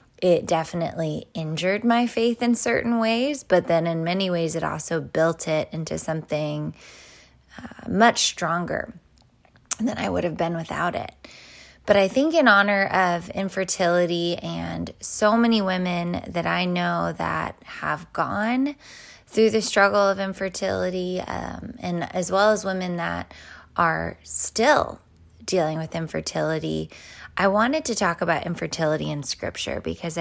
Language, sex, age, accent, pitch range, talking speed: English, female, 20-39, American, 160-200 Hz, 145 wpm